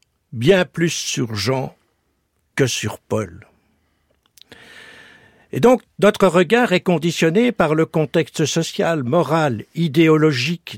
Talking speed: 105 wpm